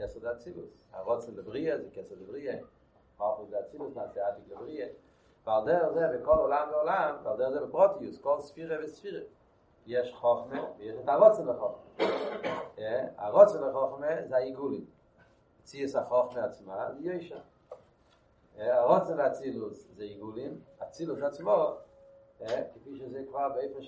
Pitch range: 130-170 Hz